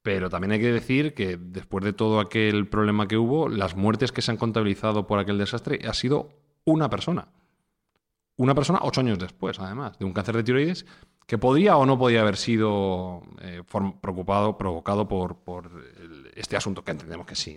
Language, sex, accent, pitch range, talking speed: Spanish, male, Spanish, 95-120 Hz, 190 wpm